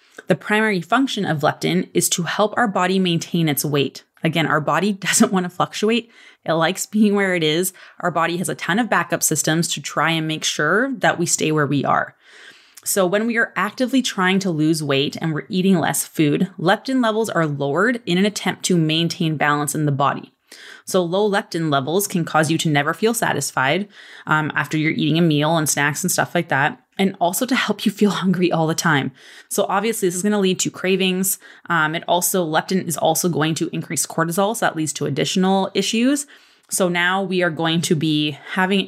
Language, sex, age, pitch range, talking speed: English, female, 20-39, 160-200 Hz, 215 wpm